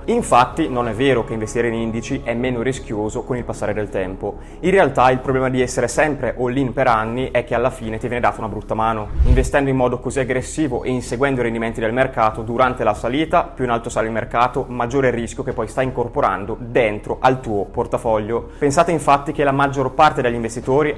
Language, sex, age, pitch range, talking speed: Italian, male, 20-39, 110-135 Hz, 215 wpm